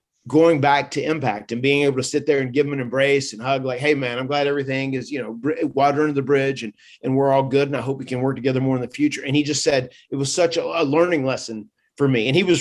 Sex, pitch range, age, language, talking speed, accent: male, 130-150 Hz, 30-49, English, 295 wpm, American